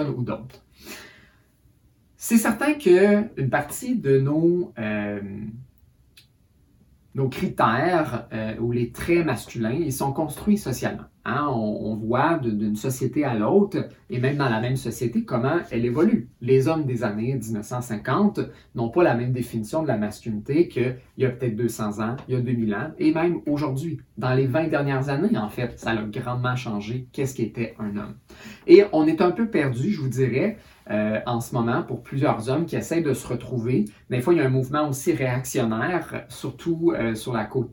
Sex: male